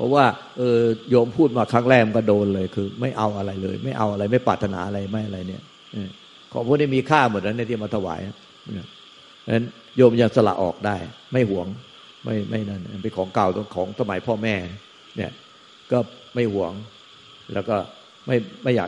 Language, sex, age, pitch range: Thai, male, 60-79, 100-120 Hz